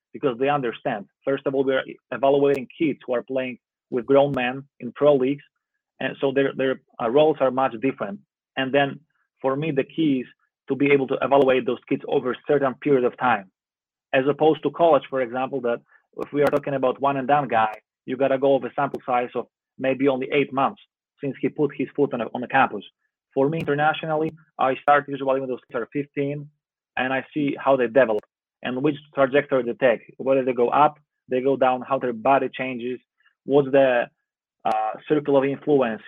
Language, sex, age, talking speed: English, male, 30-49, 205 wpm